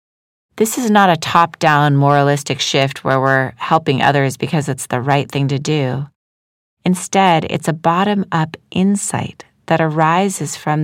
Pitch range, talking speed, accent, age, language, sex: 140-180 Hz, 145 wpm, American, 30-49, English, female